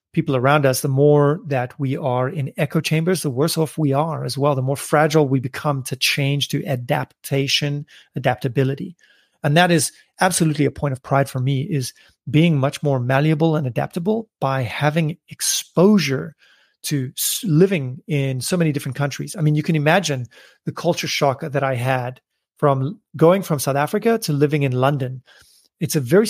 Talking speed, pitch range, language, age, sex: 180 wpm, 135-160 Hz, English, 30-49, male